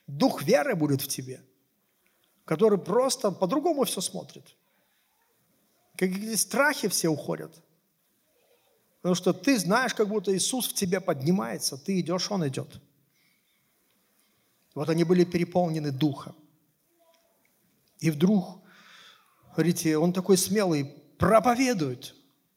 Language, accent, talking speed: Russian, native, 105 wpm